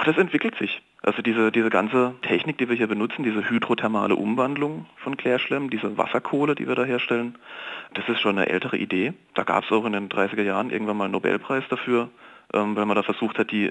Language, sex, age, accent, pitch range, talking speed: German, male, 40-59, German, 100-120 Hz, 210 wpm